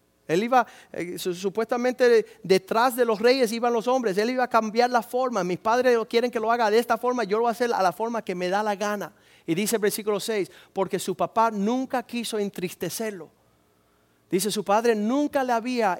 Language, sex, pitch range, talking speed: Spanish, male, 175-225 Hz, 210 wpm